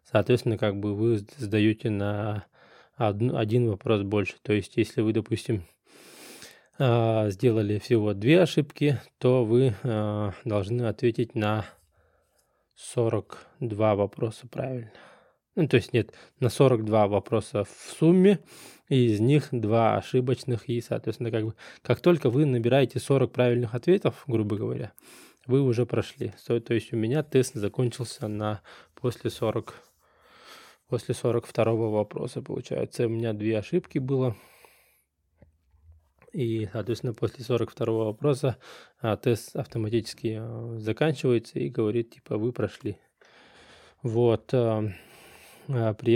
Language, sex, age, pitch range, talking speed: Russian, male, 20-39, 110-125 Hz, 120 wpm